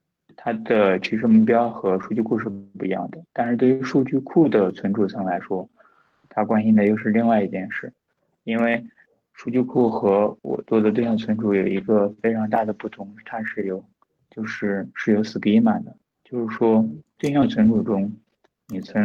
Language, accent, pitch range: Chinese, native, 100-120 Hz